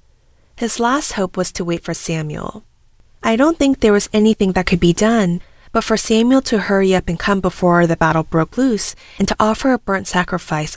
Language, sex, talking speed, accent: English, female, 205 wpm, American